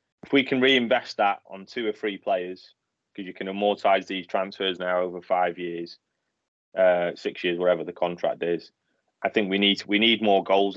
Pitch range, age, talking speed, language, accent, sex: 95-125 Hz, 20-39, 195 wpm, English, British, male